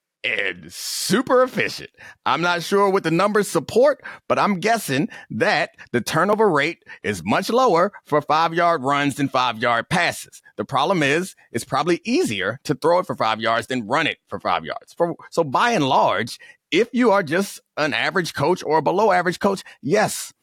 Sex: male